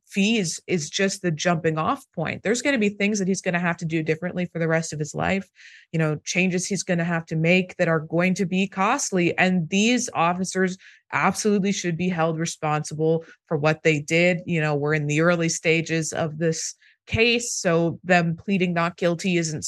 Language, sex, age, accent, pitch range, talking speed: English, female, 20-39, American, 160-195 Hz, 210 wpm